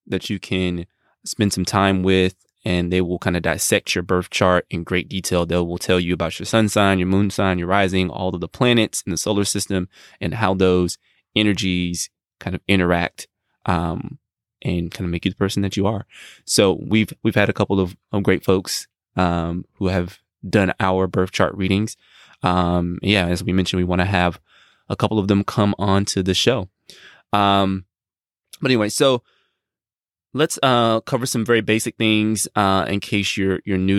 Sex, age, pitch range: male, 20-39, 90-105 Hz